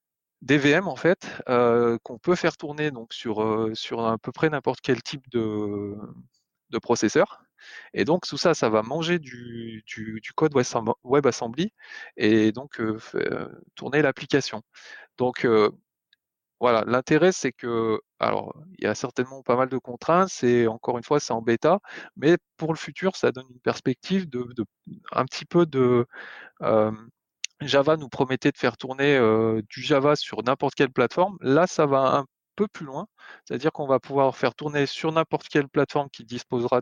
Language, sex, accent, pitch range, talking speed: French, male, French, 115-155 Hz, 180 wpm